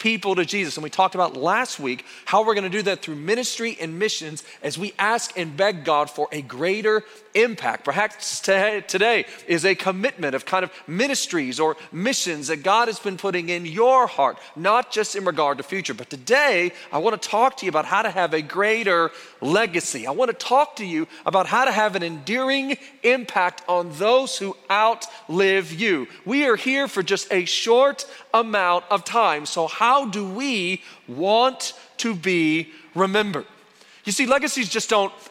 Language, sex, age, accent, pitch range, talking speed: English, male, 40-59, American, 175-230 Hz, 190 wpm